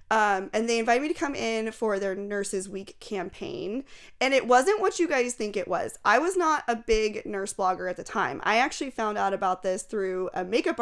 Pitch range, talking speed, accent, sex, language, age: 190-225 Hz, 225 wpm, American, female, English, 20-39